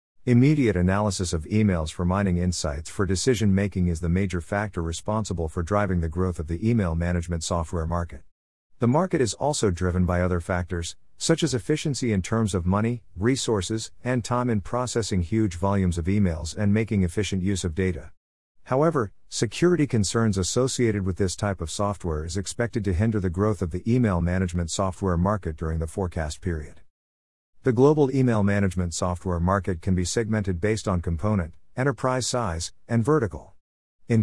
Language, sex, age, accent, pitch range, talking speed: English, male, 50-69, American, 85-110 Hz, 170 wpm